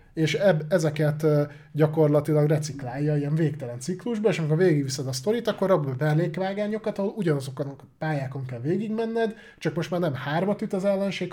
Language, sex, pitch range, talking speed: Hungarian, male, 140-180 Hz, 150 wpm